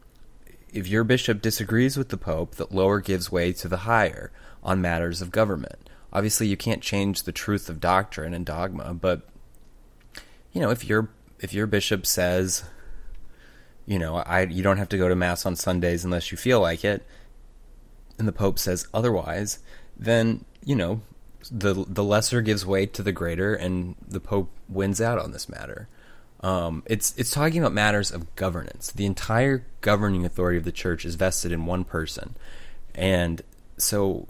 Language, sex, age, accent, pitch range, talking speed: English, male, 20-39, American, 85-105 Hz, 175 wpm